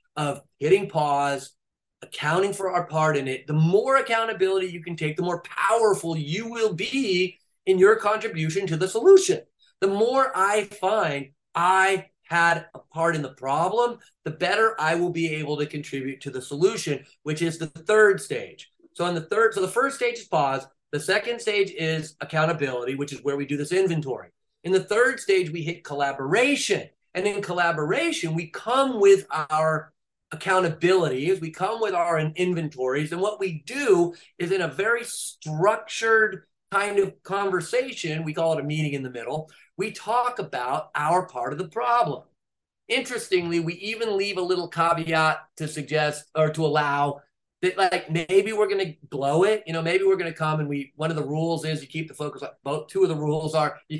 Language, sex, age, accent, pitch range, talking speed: English, male, 30-49, American, 150-195 Hz, 190 wpm